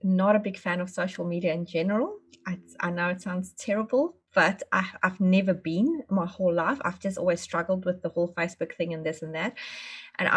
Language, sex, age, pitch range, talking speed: English, female, 20-39, 175-210 Hz, 210 wpm